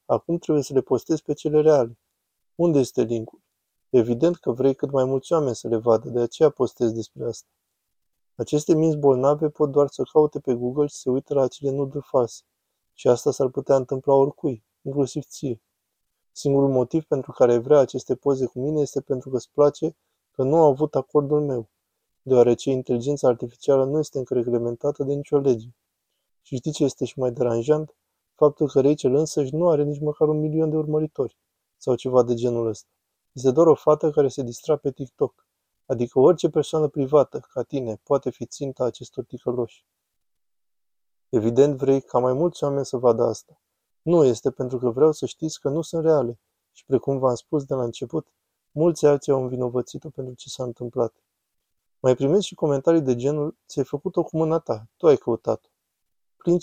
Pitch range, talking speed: 120-150 Hz, 185 wpm